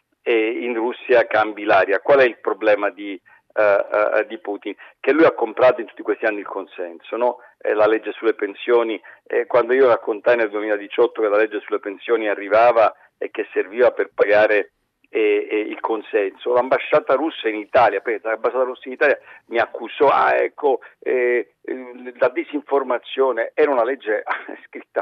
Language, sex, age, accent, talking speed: Italian, male, 50-69, native, 165 wpm